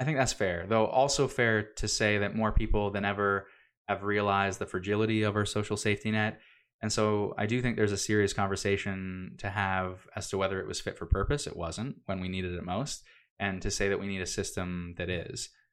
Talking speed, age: 225 wpm, 20-39